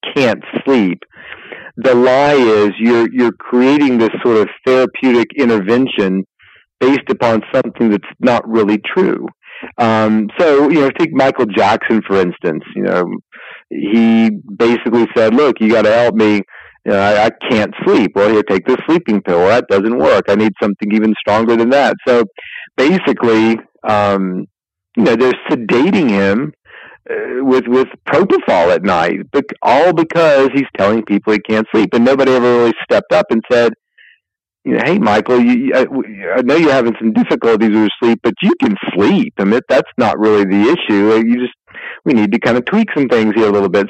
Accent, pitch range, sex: American, 110-130 Hz, male